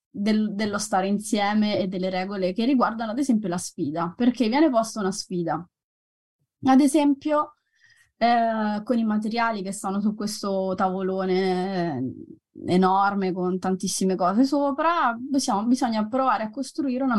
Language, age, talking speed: Italian, 20-39, 135 wpm